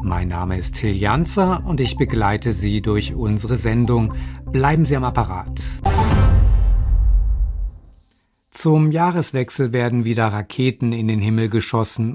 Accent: German